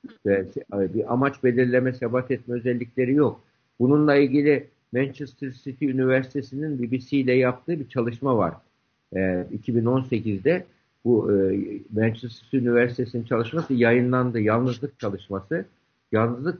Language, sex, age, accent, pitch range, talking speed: Turkish, male, 60-79, native, 120-155 Hz, 110 wpm